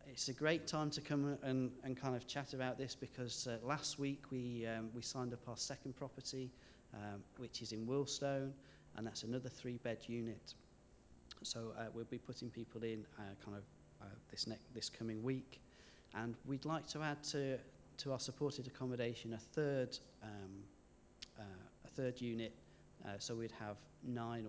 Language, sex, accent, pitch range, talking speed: English, male, British, 110-140 Hz, 180 wpm